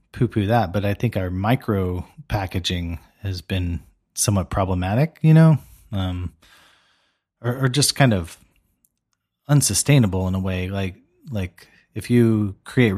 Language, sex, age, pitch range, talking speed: English, male, 30-49, 95-115 Hz, 135 wpm